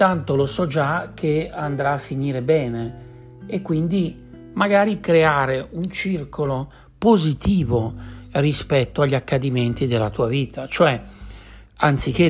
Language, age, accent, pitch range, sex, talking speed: Italian, 60-79, native, 115-155 Hz, male, 115 wpm